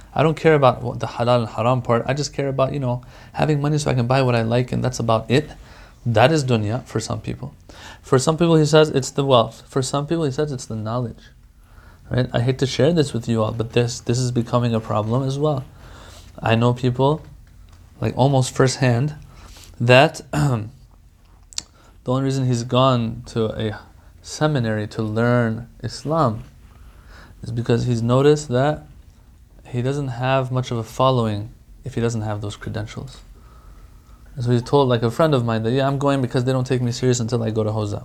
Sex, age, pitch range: male, 20-39, 110-135 Hz